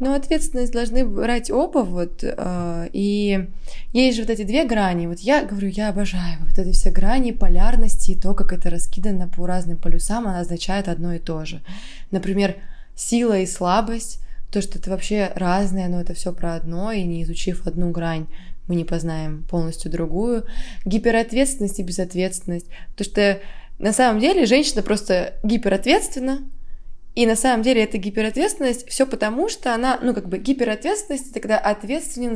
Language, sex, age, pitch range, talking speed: Russian, female, 20-39, 185-240 Hz, 165 wpm